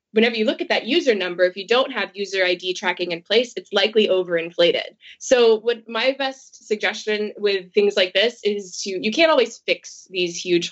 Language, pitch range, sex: English, 185-250 Hz, female